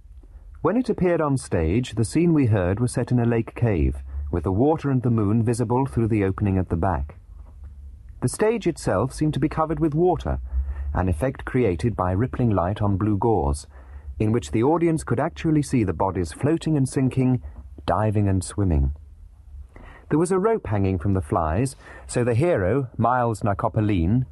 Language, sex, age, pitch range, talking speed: English, male, 40-59, 85-130 Hz, 185 wpm